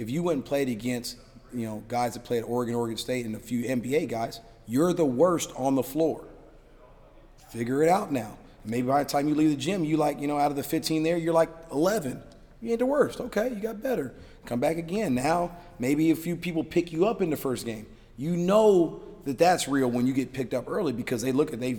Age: 40-59